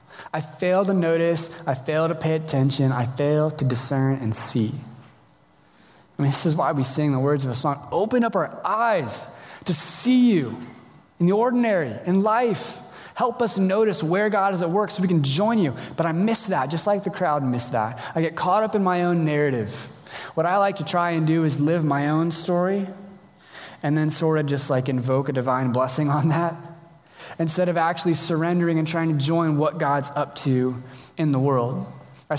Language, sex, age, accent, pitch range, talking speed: English, male, 20-39, American, 130-170 Hz, 205 wpm